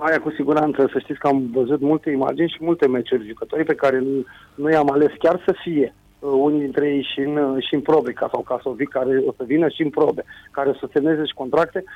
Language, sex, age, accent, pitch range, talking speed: Romanian, male, 30-49, native, 130-155 Hz, 235 wpm